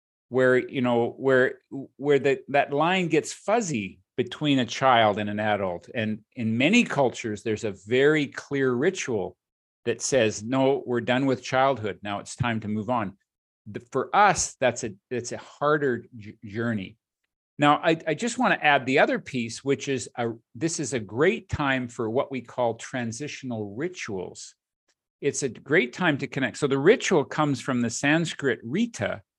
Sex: male